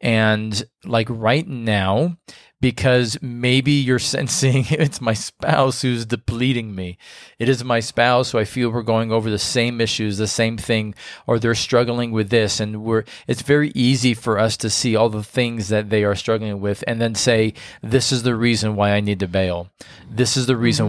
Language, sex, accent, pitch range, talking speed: English, male, American, 110-130 Hz, 195 wpm